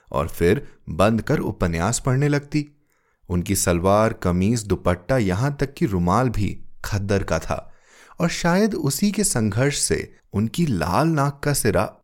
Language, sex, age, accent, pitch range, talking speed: Hindi, male, 30-49, native, 95-145 Hz, 150 wpm